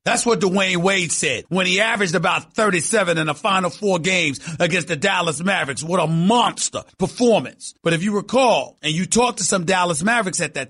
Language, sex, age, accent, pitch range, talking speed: English, male, 40-59, American, 145-195 Hz, 200 wpm